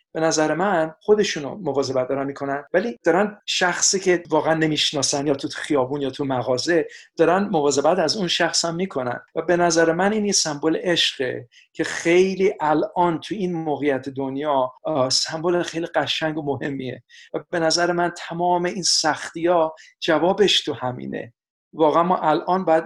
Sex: male